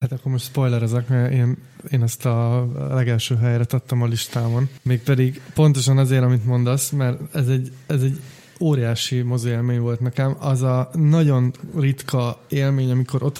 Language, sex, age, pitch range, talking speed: Hungarian, male, 20-39, 125-140 Hz, 160 wpm